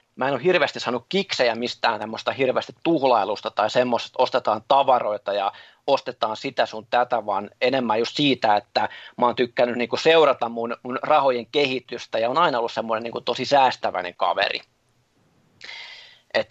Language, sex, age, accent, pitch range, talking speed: Finnish, male, 30-49, native, 115-140 Hz, 155 wpm